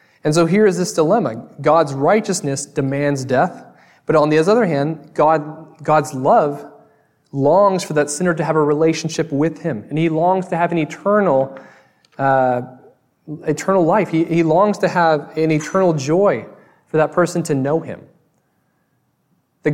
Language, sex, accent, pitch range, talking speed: English, male, American, 135-175 Hz, 160 wpm